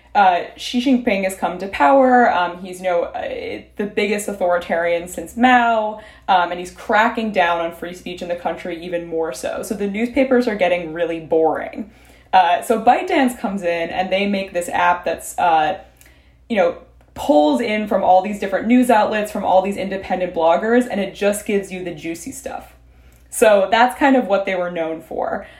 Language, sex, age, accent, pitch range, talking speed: English, female, 10-29, American, 175-225 Hz, 190 wpm